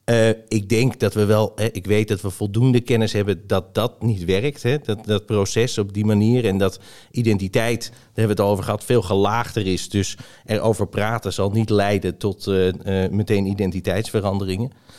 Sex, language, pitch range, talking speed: male, Dutch, 105-120 Hz, 190 wpm